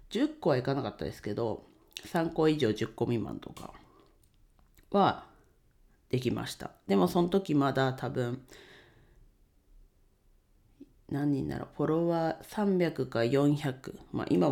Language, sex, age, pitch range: Japanese, female, 40-59, 115-155 Hz